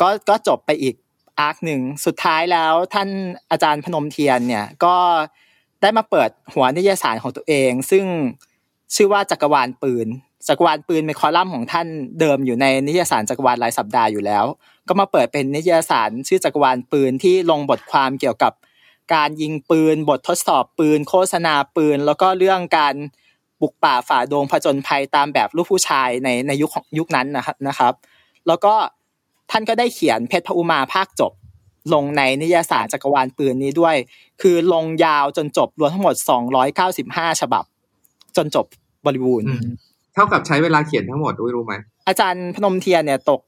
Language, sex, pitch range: Thai, male, 135-175 Hz